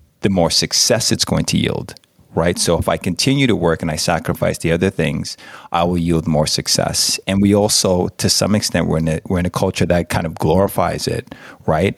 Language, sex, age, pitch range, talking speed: English, male, 30-49, 85-105 Hz, 220 wpm